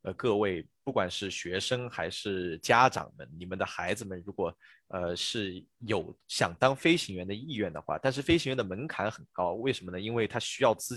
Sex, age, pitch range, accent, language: male, 20-39, 95-130 Hz, native, Chinese